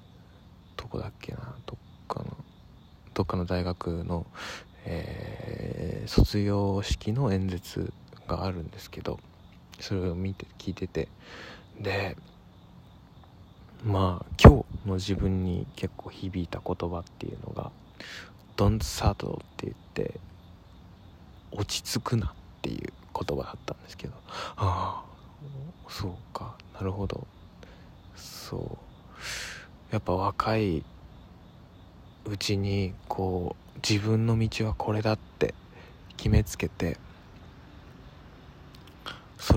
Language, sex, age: Japanese, male, 20-39